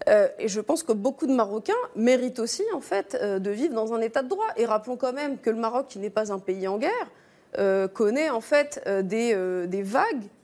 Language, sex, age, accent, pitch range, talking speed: French, female, 30-49, French, 205-270 Hz, 245 wpm